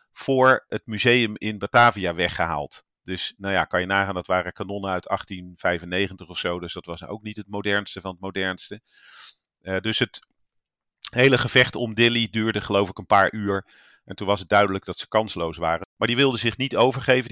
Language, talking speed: Dutch, 200 wpm